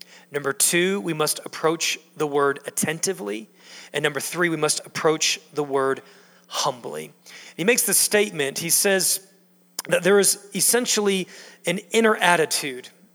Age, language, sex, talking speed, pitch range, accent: 40-59, English, male, 135 wpm, 145-185 Hz, American